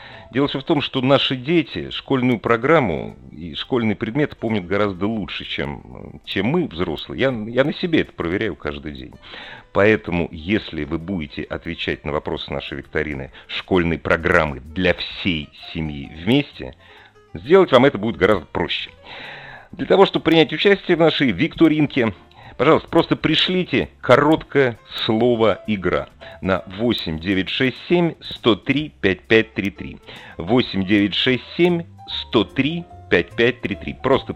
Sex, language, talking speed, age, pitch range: male, Russian, 120 wpm, 40-59, 90-135 Hz